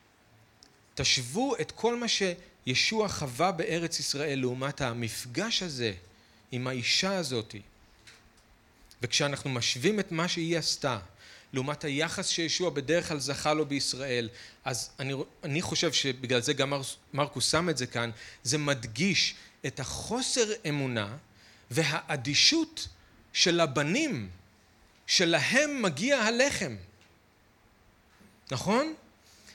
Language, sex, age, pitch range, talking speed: Hebrew, male, 40-59, 115-180 Hz, 110 wpm